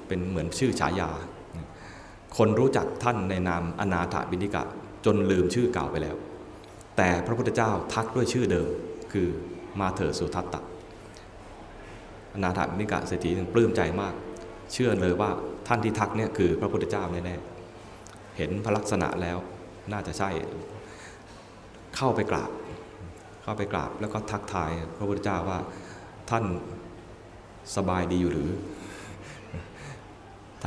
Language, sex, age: Thai, male, 20-39